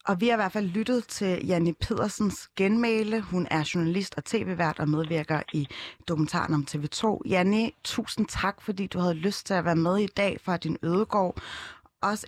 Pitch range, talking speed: 160-210 Hz, 190 wpm